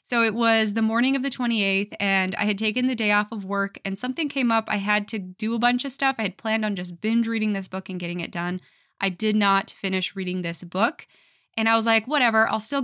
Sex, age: female, 20-39